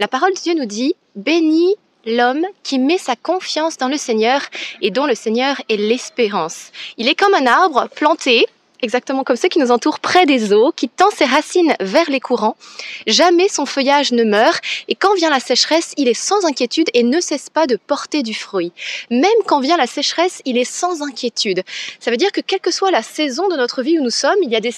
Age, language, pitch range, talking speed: 20-39, French, 245-345 Hz, 230 wpm